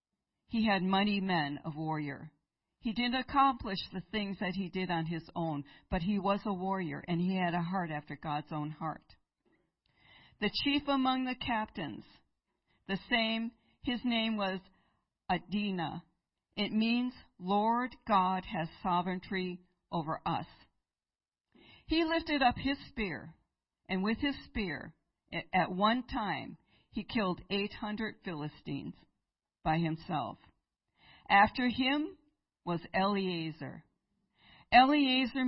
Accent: American